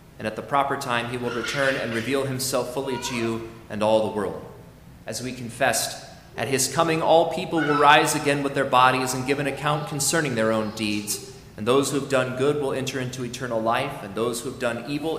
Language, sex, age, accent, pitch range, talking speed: English, male, 30-49, American, 125-160 Hz, 225 wpm